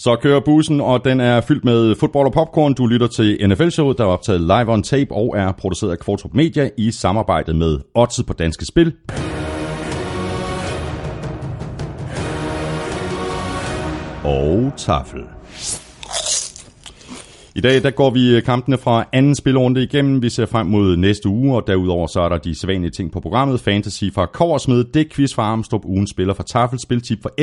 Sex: male